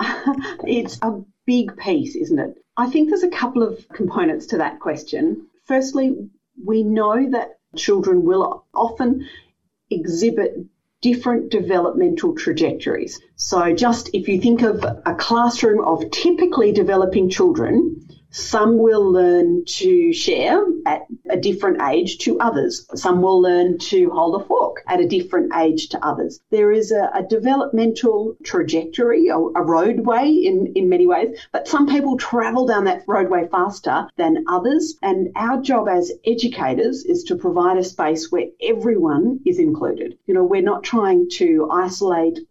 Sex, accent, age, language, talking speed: female, Australian, 40-59, English, 150 wpm